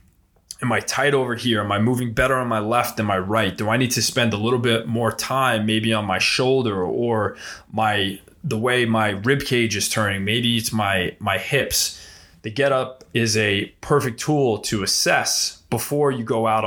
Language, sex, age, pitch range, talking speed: English, male, 20-39, 105-125 Hz, 200 wpm